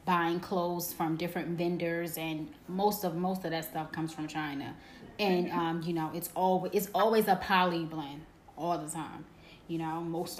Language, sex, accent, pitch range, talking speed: English, female, American, 175-215 Hz, 185 wpm